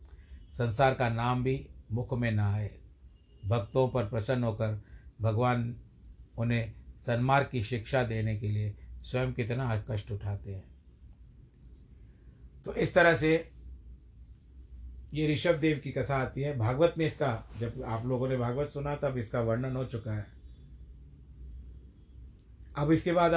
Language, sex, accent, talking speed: Hindi, male, native, 140 wpm